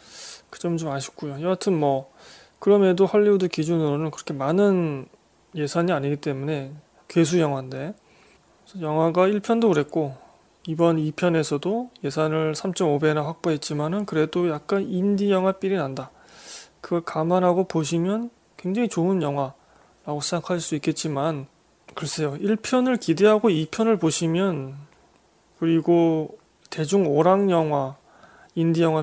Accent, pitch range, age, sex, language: native, 155-190 Hz, 20-39, male, Korean